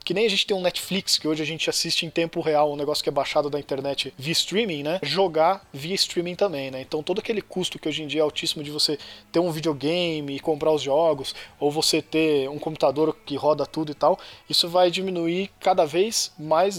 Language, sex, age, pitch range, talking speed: Portuguese, male, 20-39, 150-190 Hz, 230 wpm